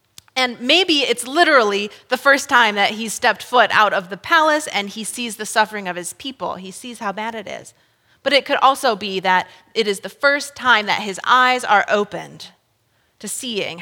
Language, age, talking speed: English, 30-49, 205 wpm